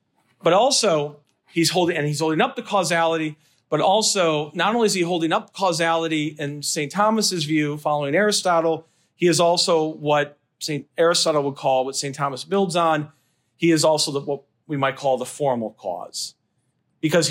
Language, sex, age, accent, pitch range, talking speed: English, male, 40-59, American, 135-175 Hz, 175 wpm